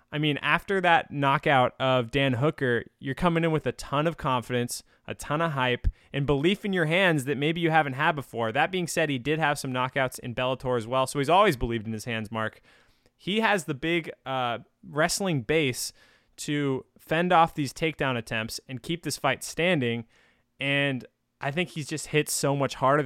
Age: 20-39